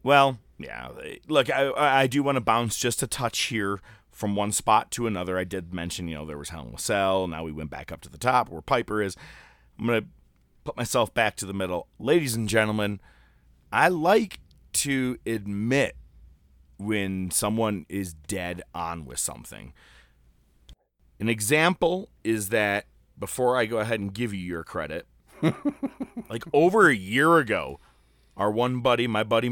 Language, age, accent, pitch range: English, 30-49, American, 85-135 Hz